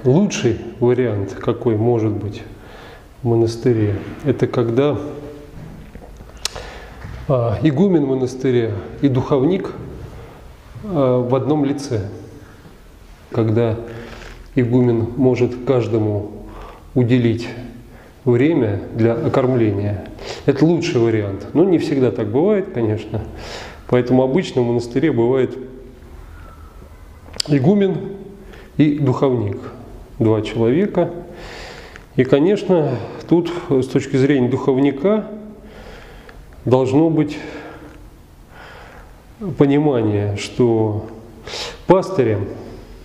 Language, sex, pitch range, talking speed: Russian, male, 115-140 Hz, 80 wpm